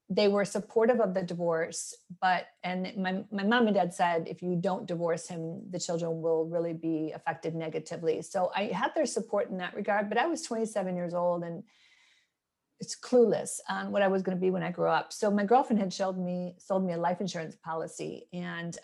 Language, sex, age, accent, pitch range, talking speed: English, female, 40-59, American, 170-200 Hz, 215 wpm